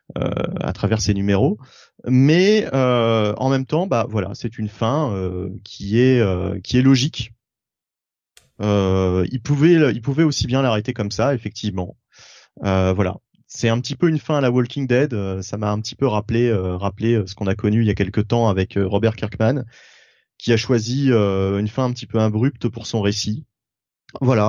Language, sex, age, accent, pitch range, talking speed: French, male, 30-49, French, 105-125 Hz, 195 wpm